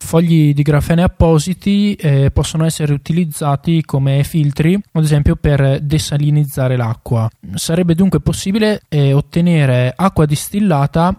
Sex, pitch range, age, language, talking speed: male, 130-170 Hz, 20-39, Italian, 105 wpm